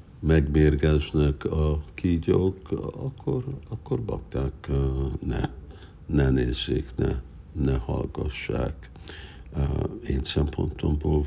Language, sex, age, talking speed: Hungarian, male, 60-79, 75 wpm